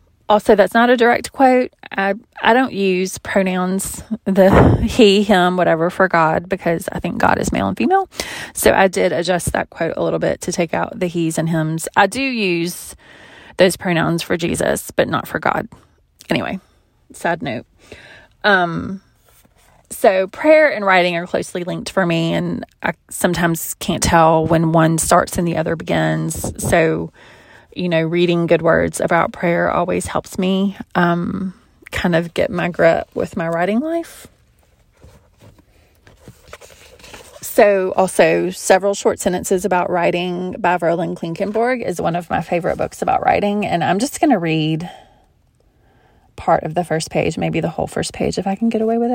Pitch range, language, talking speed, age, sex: 165-200 Hz, English, 170 wpm, 20-39, female